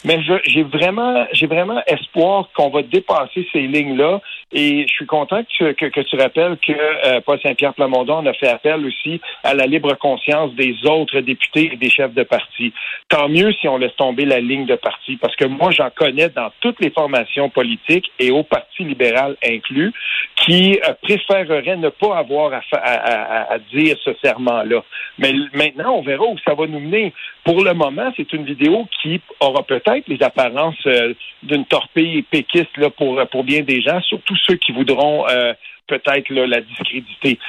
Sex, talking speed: male, 195 wpm